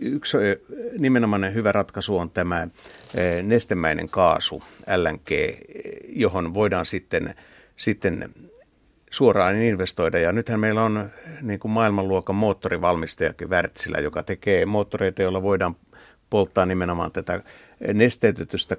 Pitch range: 95-115 Hz